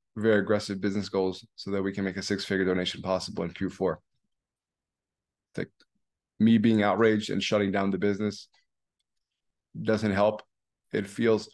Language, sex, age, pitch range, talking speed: English, male, 20-39, 95-105 Hz, 150 wpm